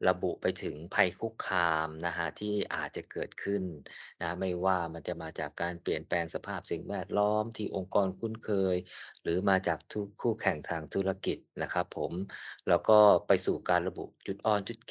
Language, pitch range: Thai, 85-105 Hz